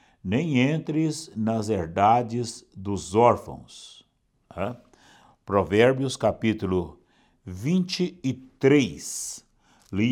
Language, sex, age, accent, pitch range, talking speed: Portuguese, male, 60-79, Brazilian, 100-160 Hz, 65 wpm